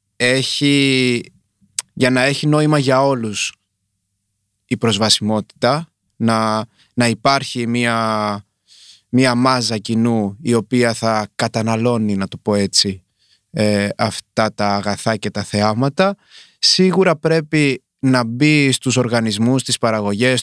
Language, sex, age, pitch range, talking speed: Greek, male, 20-39, 110-140 Hz, 115 wpm